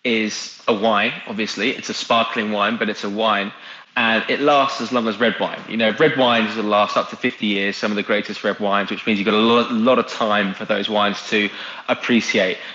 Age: 20-39